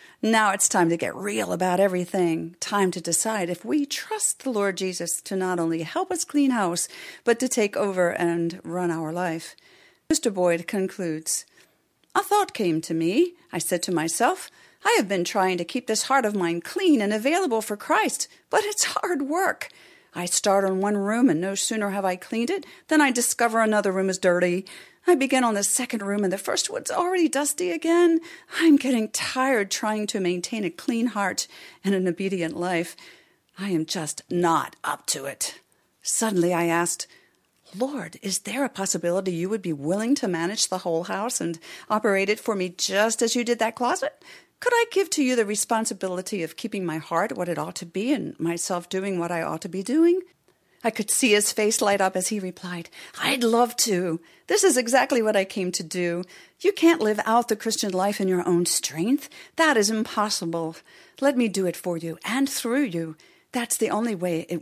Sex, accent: female, American